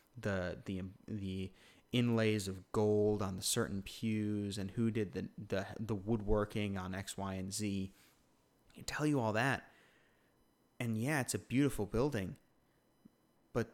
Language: English